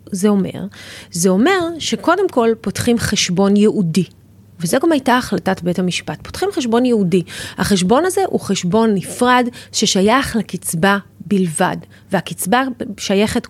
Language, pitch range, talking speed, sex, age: Hebrew, 185-250 Hz, 125 wpm, female, 30-49